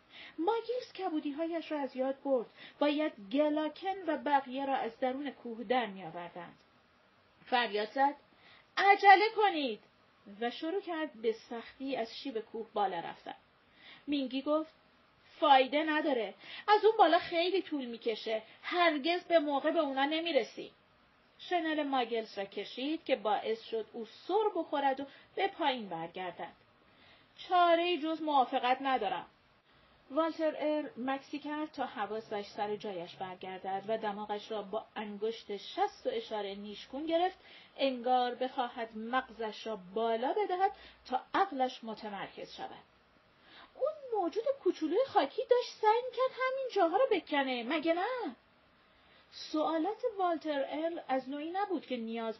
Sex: female